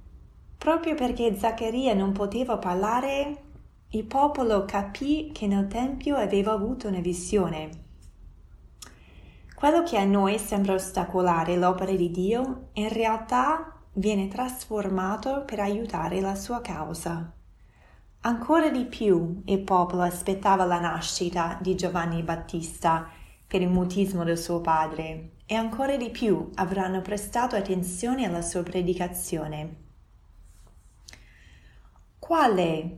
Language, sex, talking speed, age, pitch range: Italian, female, 115 wpm, 20-39, 160-215 Hz